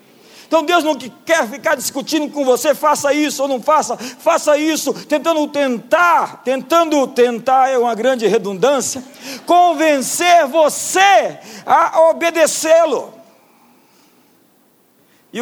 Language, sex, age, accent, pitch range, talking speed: Portuguese, male, 50-69, Brazilian, 195-275 Hz, 110 wpm